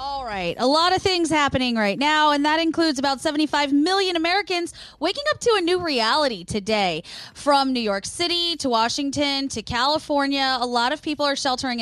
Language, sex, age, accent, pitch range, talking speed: English, female, 20-39, American, 225-300 Hz, 190 wpm